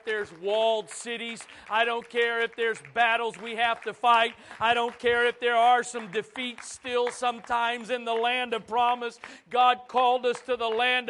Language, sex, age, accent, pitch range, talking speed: English, male, 40-59, American, 245-300 Hz, 185 wpm